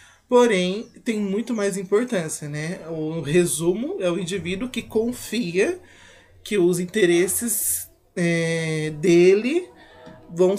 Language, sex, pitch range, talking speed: Portuguese, male, 165-205 Hz, 100 wpm